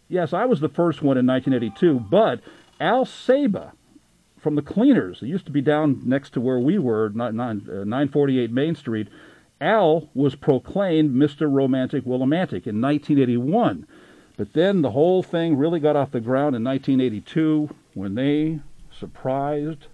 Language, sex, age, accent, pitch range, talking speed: English, male, 50-69, American, 125-155 Hz, 150 wpm